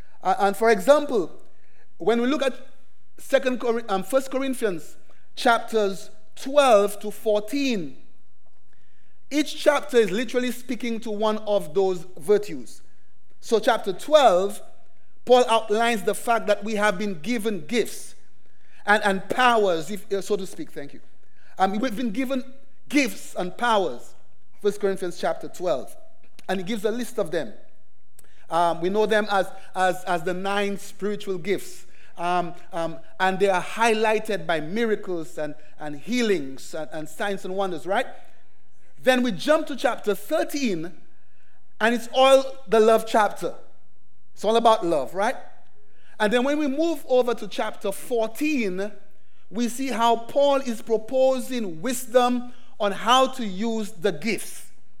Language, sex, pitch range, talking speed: English, male, 190-245 Hz, 145 wpm